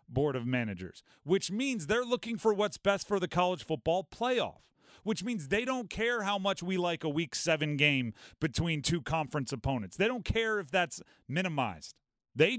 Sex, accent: male, American